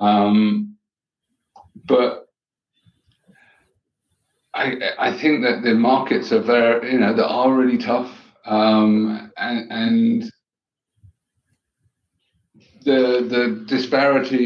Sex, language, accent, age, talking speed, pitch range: male, English, British, 50-69, 90 wpm, 110-140 Hz